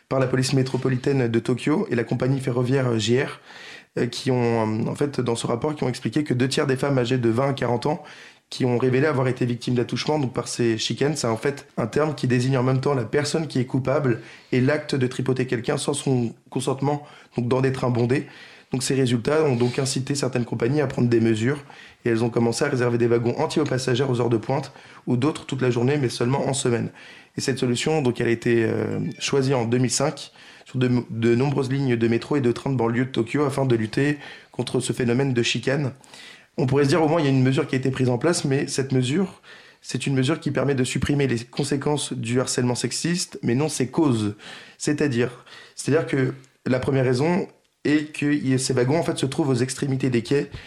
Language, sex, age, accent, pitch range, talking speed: French, male, 20-39, French, 125-145 Hz, 230 wpm